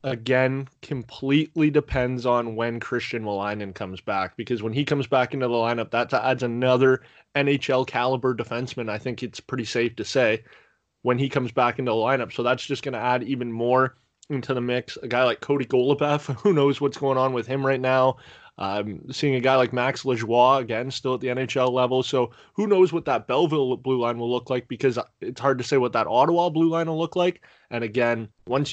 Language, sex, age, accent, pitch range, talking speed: English, male, 20-39, American, 120-135 Hz, 210 wpm